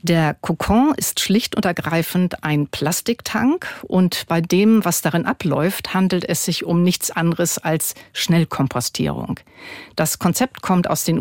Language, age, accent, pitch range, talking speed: German, 50-69, German, 160-195 Hz, 145 wpm